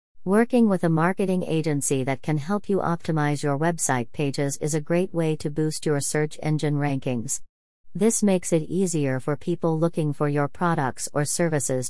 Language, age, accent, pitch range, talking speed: English, 40-59, American, 140-175 Hz, 175 wpm